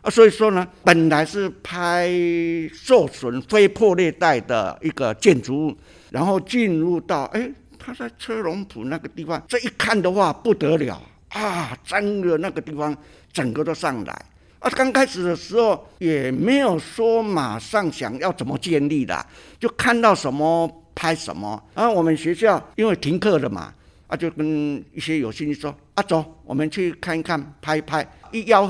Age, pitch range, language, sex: 60-79, 130-185 Hz, Chinese, male